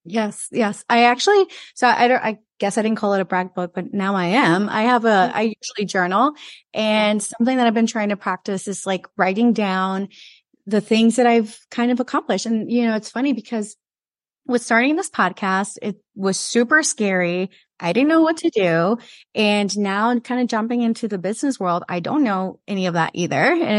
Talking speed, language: 210 wpm, English